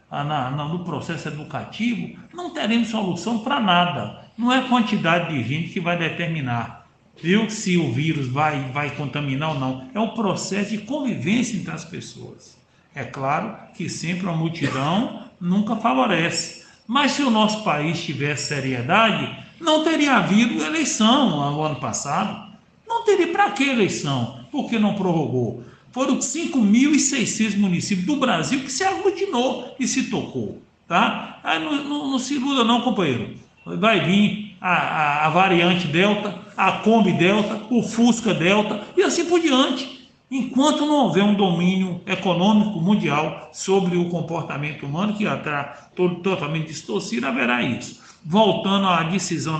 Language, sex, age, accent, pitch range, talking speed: Portuguese, male, 60-79, Brazilian, 165-235 Hz, 150 wpm